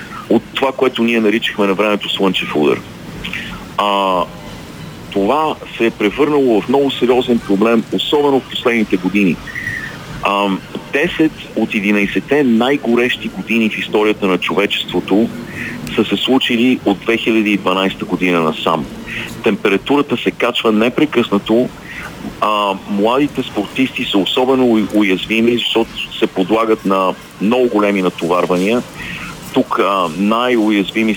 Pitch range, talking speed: 100-120 Hz, 115 wpm